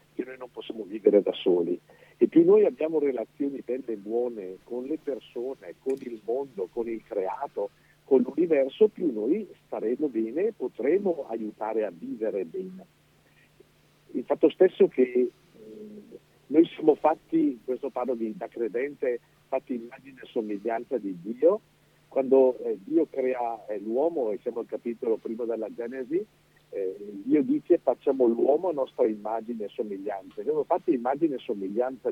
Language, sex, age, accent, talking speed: Italian, male, 50-69, native, 155 wpm